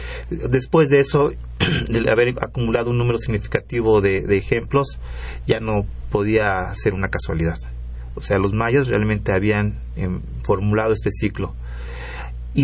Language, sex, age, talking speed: Spanish, male, 40-59, 140 wpm